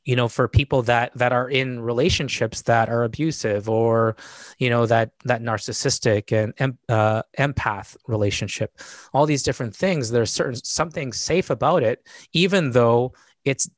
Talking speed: 155 wpm